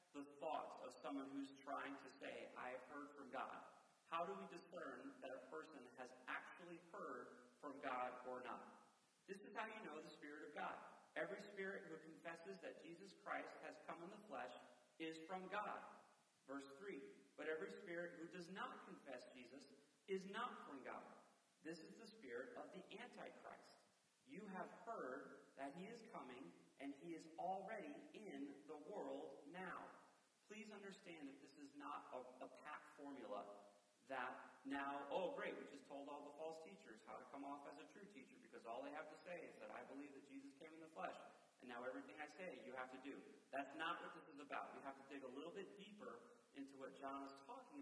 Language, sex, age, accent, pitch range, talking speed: English, male, 40-59, American, 140-190 Hz, 190 wpm